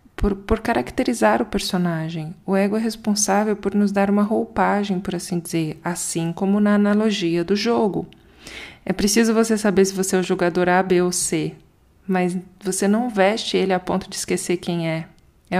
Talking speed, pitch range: 185 wpm, 175-205 Hz